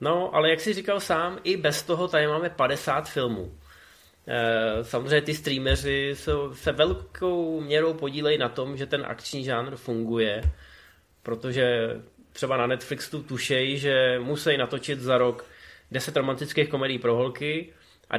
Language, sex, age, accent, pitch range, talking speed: Czech, male, 20-39, native, 115-145 Hz, 150 wpm